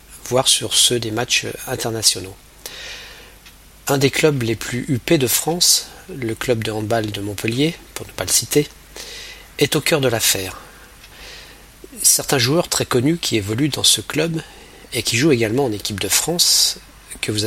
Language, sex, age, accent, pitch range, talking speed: French, male, 40-59, French, 110-140 Hz, 170 wpm